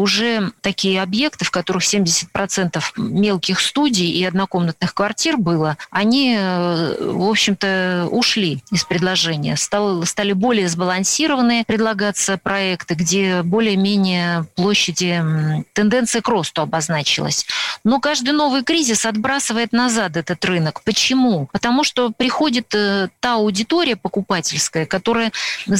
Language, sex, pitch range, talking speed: Russian, female, 180-225 Hz, 105 wpm